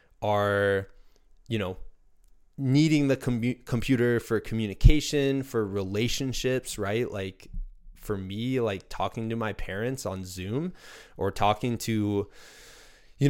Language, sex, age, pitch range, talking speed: English, male, 20-39, 95-125 Hz, 115 wpm